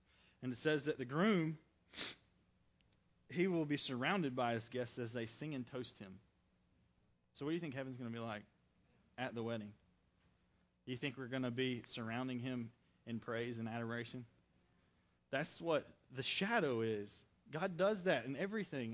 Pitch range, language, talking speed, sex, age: 115-150 Hz, English, 175 wpm, male, 20-39